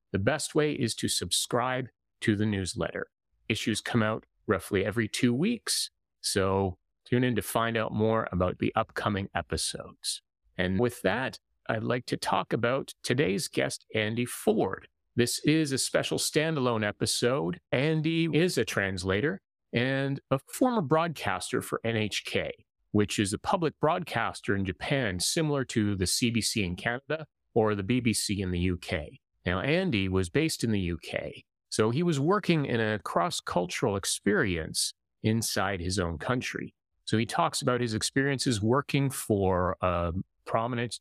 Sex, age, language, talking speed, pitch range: male, 30-49, English, 150 wpm, 95-130 Hz